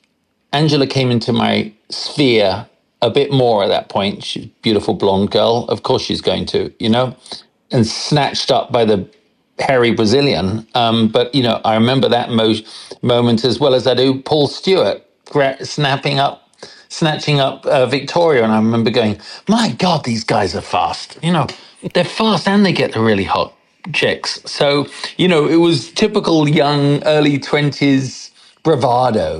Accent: British